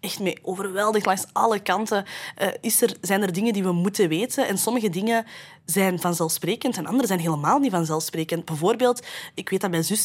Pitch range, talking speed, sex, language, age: 170-230 Hz, 195 wpm, female, Dutch, 20-39